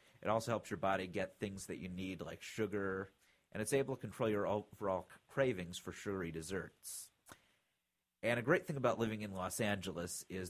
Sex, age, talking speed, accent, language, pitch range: male, 30-49, 190 wpm, American, English, 85-100 Hz